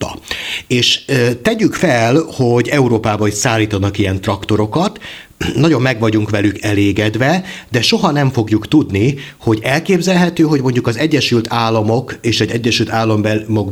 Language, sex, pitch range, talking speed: Hungarian, male, 110-140 Hz, 130 wpm